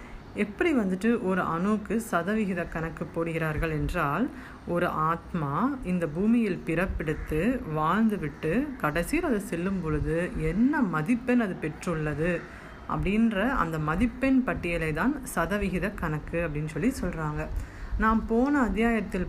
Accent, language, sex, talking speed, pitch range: native, Tamil, female, 110 wpm, 170-230 Hz